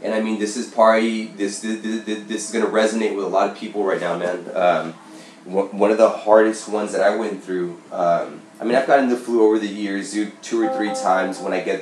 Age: 20-39